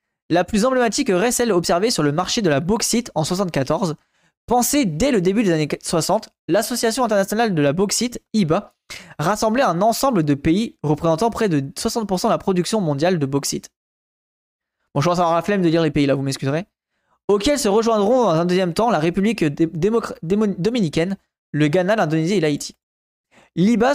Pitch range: 160-225 Hz